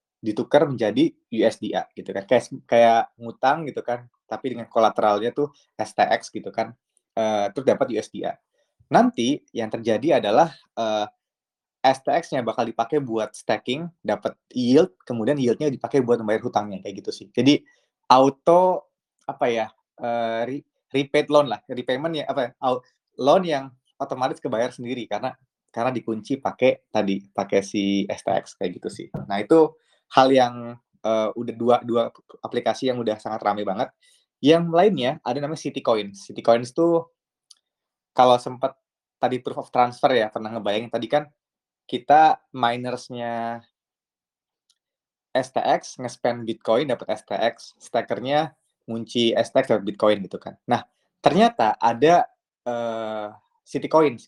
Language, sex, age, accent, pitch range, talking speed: Indonesian, male, 20-39, native, 115-145 Hz, 135 wpm